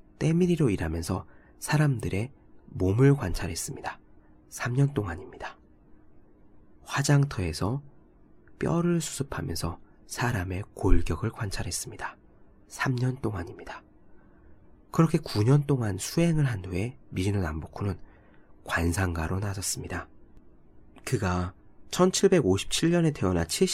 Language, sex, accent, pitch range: Korean, male, native, 85-130 Hz